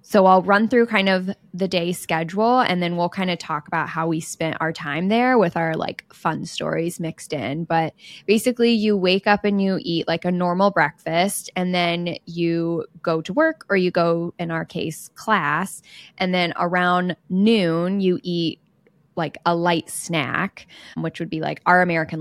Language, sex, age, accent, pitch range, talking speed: English, female, 10-29, American, 165-195 Hz, 190 wpm